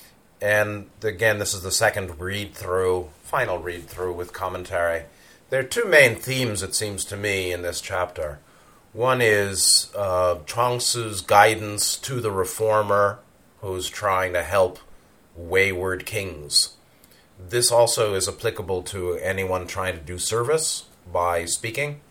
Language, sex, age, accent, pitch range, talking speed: English, male, 30-49, American, 90-110 Hz, 135 wpm